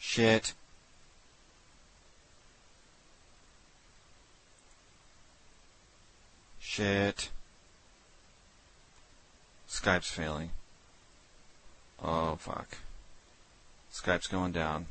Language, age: English, 40-59